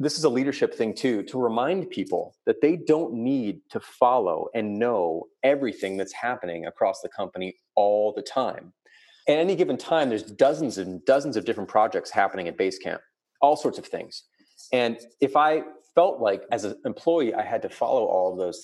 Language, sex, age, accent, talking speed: English, male, 30-49, American, 190 wpm